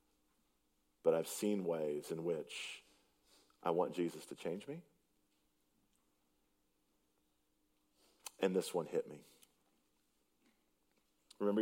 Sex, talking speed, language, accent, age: male, 95 wpm, English, American, 40-59